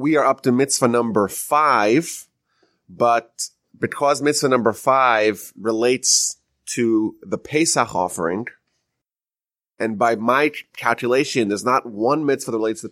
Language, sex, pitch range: English, male, 120-150 Hz